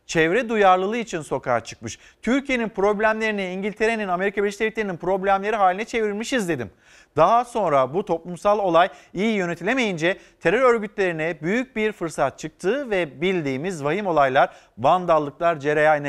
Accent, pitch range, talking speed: native, 160-210 Hz, 125 wpm